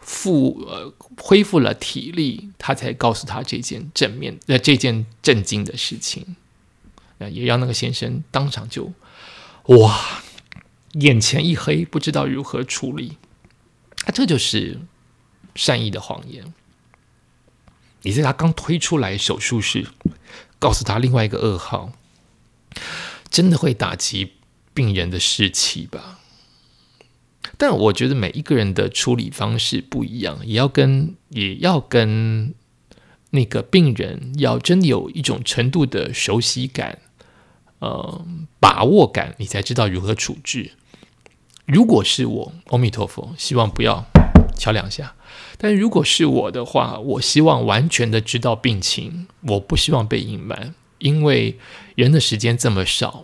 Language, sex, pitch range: Chinese, male, 110-150 Hz